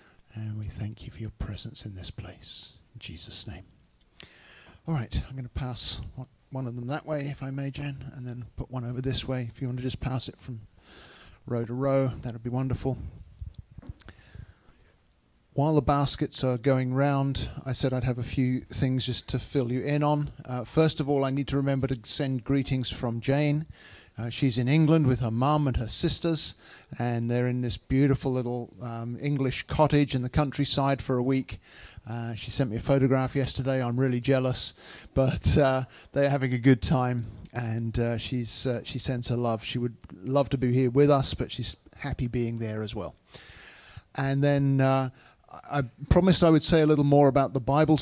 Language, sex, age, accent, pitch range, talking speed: English, male, 40-59, British, 120-145 Hz, 200 wpm